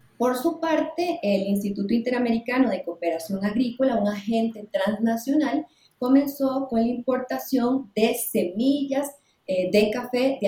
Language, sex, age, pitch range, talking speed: English, female, 30-49, 200-255 Hz, 120 wpm